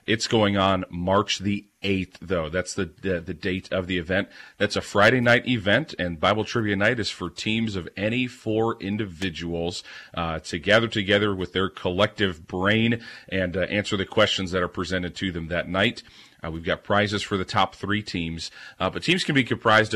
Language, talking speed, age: English, 200 wpm, 40-59